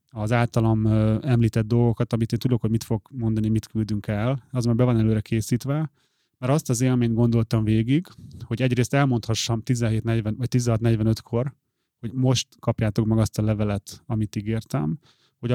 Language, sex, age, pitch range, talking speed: Hungarian, male, 30-49, 115-130 Hz, 170 wpm